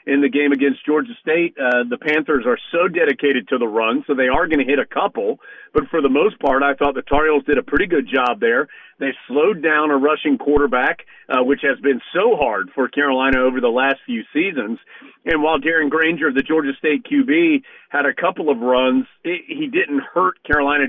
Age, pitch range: 40-59, 135-165 Hz